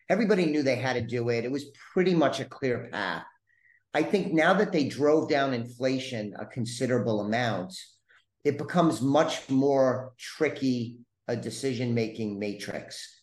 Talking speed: 150 wpm